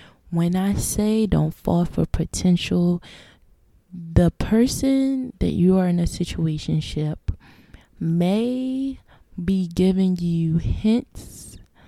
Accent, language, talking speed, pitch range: American, English, 105 wpm, 160-185 Hz